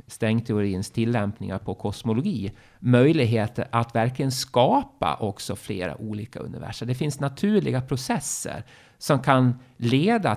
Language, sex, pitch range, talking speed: Swedish, male, 105-135 Hz, 110 wpm